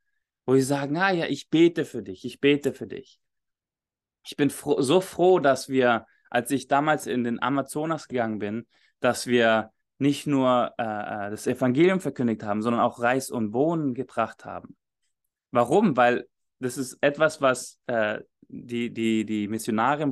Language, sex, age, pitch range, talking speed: English, male, 20-39, 120-145 Hz, 155 wpm